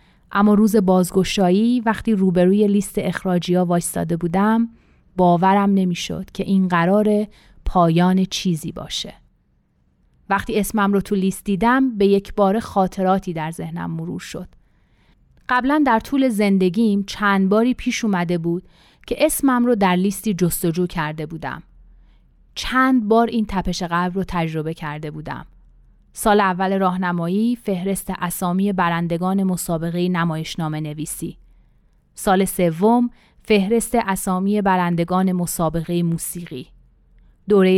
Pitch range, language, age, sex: 175-205 Hz, Persian, 30-49, female